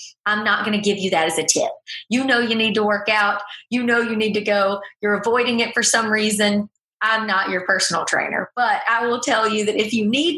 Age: 30-49